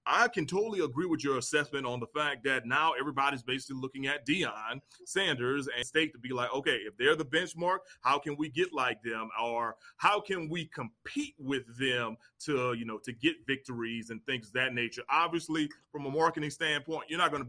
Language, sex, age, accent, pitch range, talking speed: English, male, 30-49, American, 120-150 Hz, 210 wpm